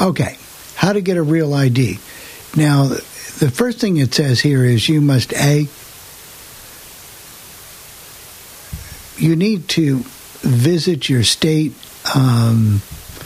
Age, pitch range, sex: 60-79, 125-160 Hz, male